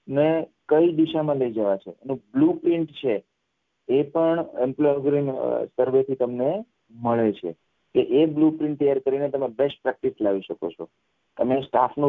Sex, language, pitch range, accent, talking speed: male, English, 125-160 Hz, Indian, 105 wpm